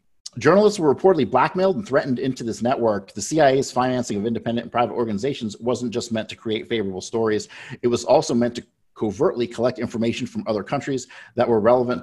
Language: English